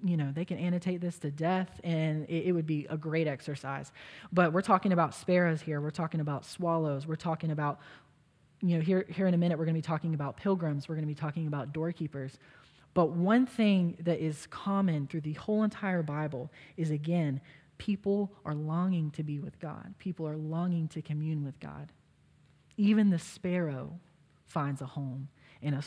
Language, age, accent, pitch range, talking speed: English, 20-39, American, 150-180 Hz, 195 wpm